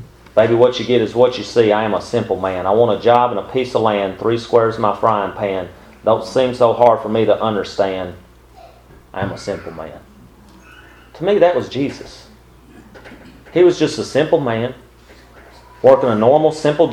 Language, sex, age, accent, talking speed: English, male, 40-59, American, 200 wpm